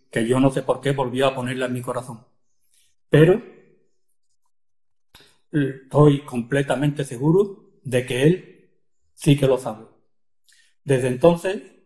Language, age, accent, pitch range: Spanish, 40-59, Spanish, 130-170 Hz